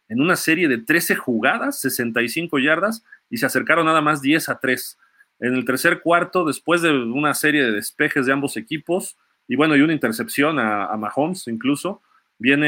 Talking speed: 185 wpm